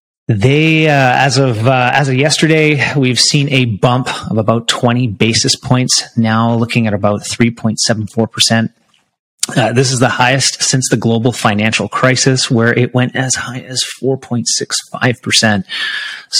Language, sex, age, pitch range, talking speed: English, male, 30-49, 115-140 Hz, 145 wpm